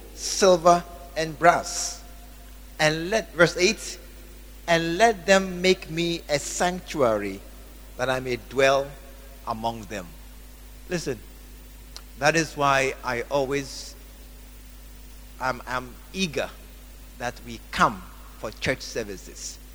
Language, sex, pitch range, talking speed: English, male, 130-205 Hz, 105 wpm